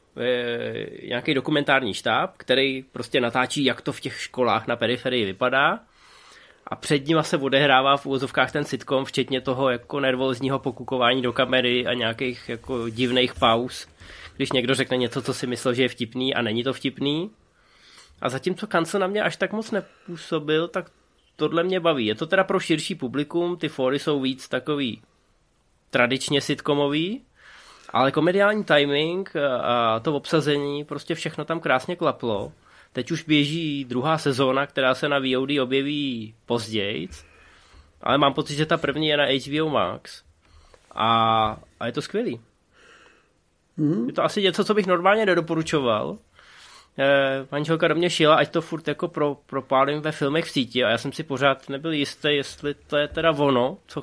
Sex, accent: male, native